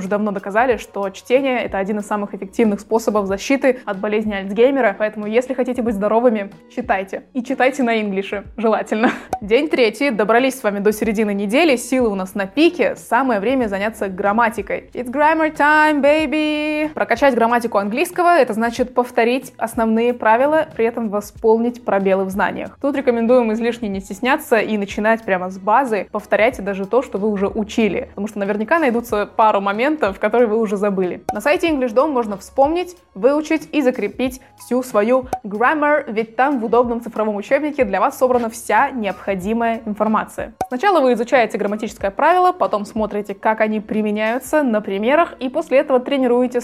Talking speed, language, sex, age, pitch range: 165 wpm, Russian, female, 20-39, 210-260 Hz